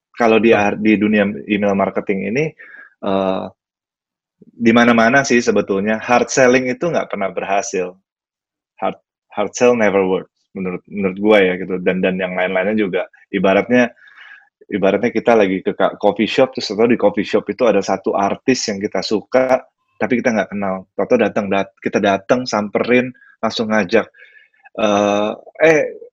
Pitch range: 100-120 Hz